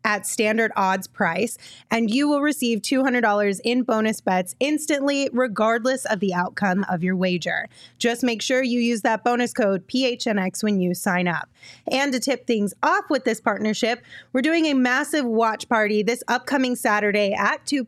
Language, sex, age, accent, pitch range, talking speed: English, female, 20-39, American, 200-255 Hz, 175 wpm